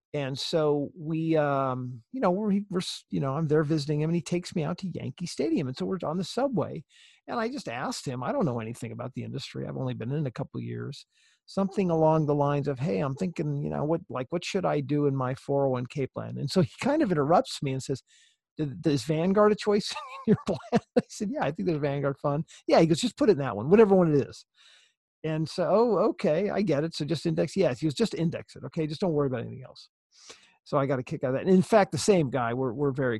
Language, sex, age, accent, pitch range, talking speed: English, male, 50-69, American, 125-170 Hz, 265 wpm